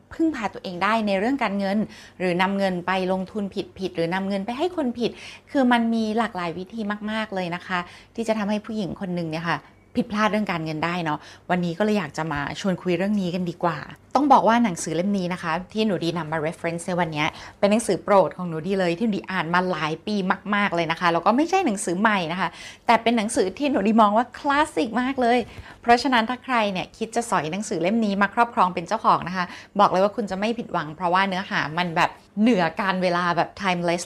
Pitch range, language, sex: 175-225 Hz, Thai, female